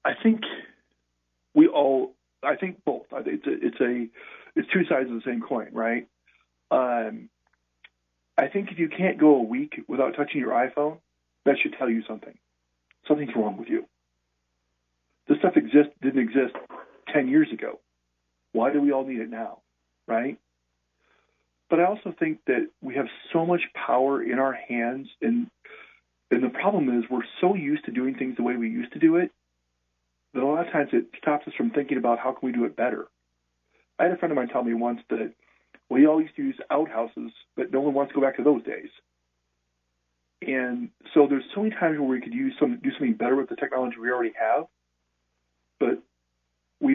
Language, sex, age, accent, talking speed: English, male, 40-59, American, 195 wpm